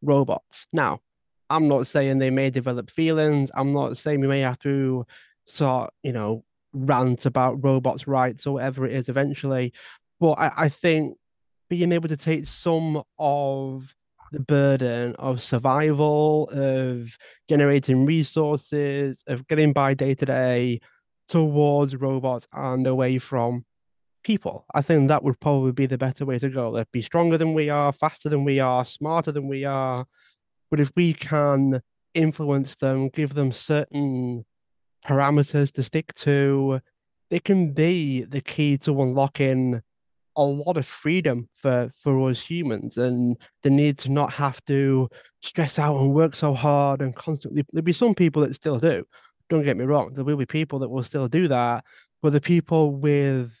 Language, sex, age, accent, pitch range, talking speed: English, male, 20-39, British, 130-150 Hz, 165 wpm